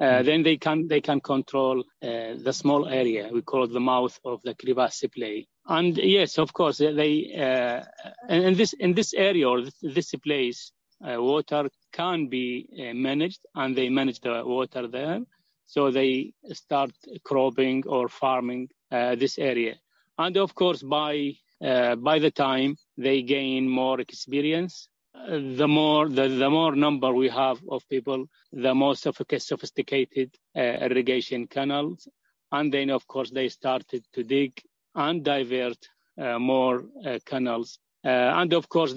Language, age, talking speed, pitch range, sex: English, 30-49, 155 wpm, 130-155 Hz, male